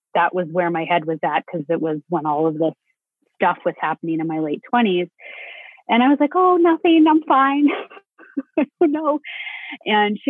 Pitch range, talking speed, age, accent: 175-265 Hz, 185 wpm, 30-49, American